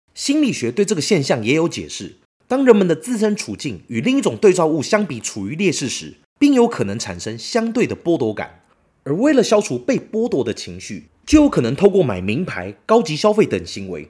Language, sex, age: Chinese, male, 30-49